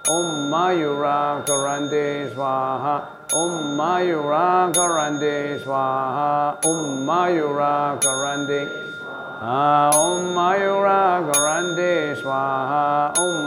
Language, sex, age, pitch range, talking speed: English, male, 50-69, 140-160 Hz, 80 wpm